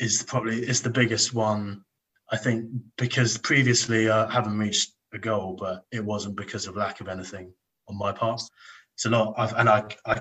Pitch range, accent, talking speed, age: 100-115 Hz, British, 200 wpm, 20-39